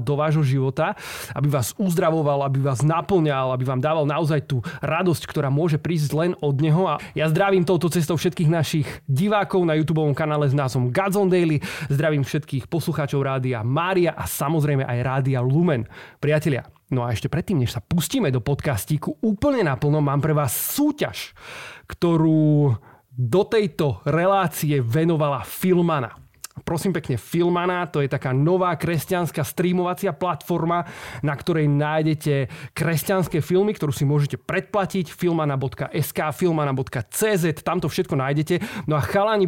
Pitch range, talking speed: 140-175 Hz, 145 wpm